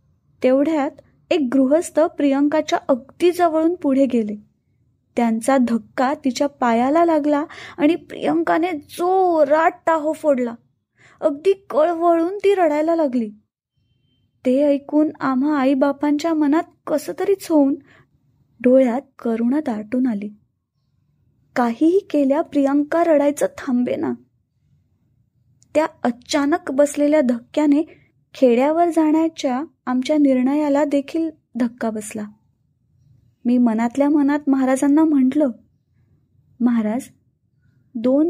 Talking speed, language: 85 wpm, Marathi